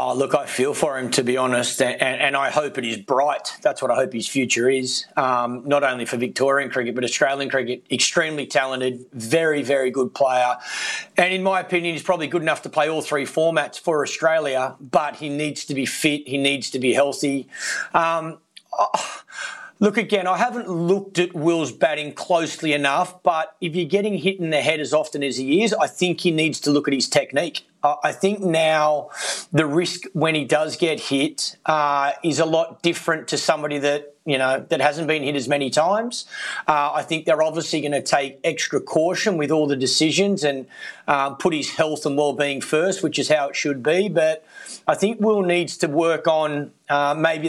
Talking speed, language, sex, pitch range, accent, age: 205 wpm, English, male, 145-175 Hz, Australian, 30-49